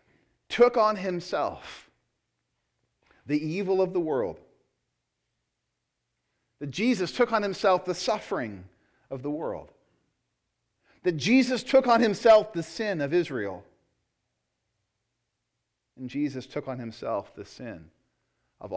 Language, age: English, 40-59